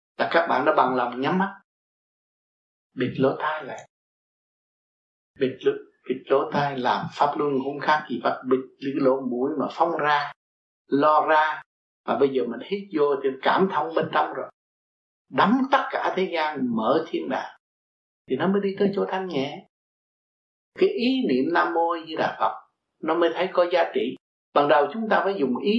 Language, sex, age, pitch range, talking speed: Vietnamese, male, 60-79, 130-190 Hz, 185 wpm